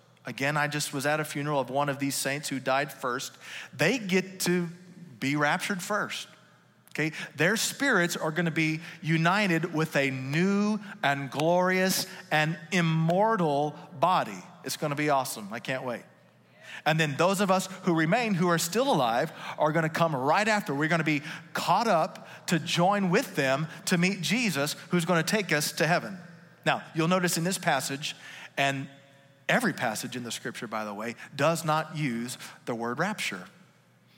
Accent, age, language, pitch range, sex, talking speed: American, 40-59, English, 140-180 Hz, male, 170 wpm